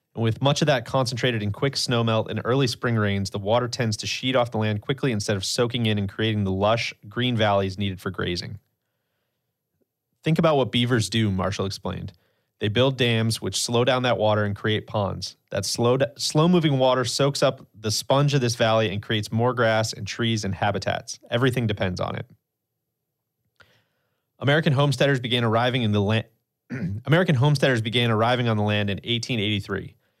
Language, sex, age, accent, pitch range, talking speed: English, male, 30-49, American, 110-130 Hz, 180 wpm